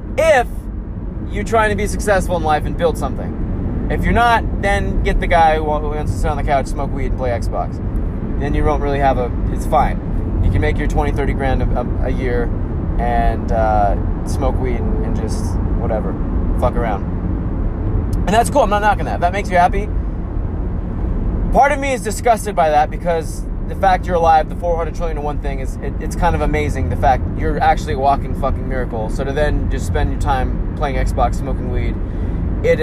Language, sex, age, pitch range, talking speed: English, male, 20-39, 90-120 Hz, 210 wpm